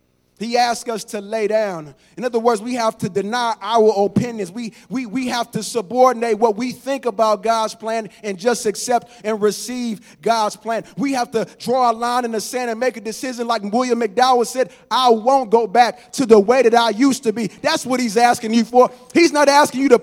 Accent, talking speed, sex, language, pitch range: American, 220 wpm, male, English, 205-270 Hz